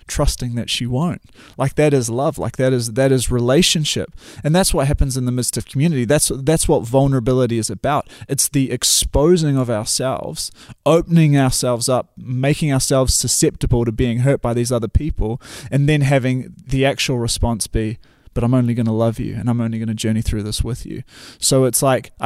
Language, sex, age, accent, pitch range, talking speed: English, male, 20-39, Australian, 115-140 Hz, 200 wpm